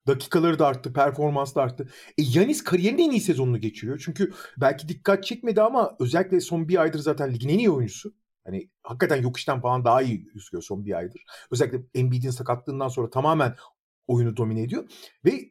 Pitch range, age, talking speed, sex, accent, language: 140-205 Hz, 40-59, 180 wpm, male, native, Turkish